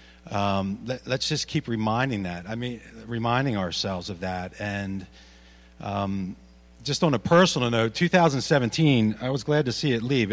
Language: English